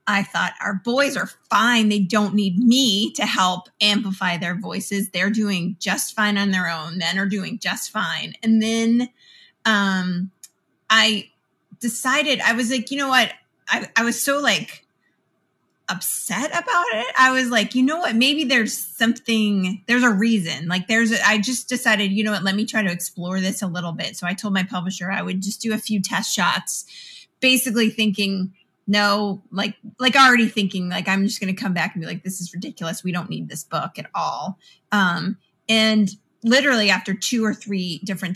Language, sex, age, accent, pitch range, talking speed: English, female, 30-49, American, 185-225 Hz, 190 wpm